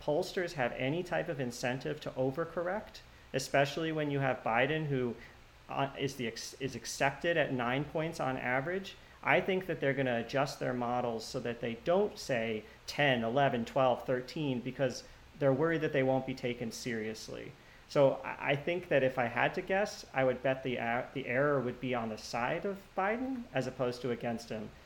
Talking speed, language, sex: 190 wpm, English, male